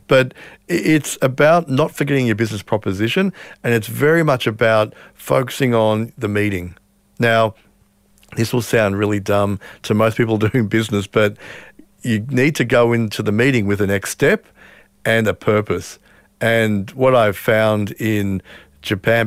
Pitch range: 105-130 Hz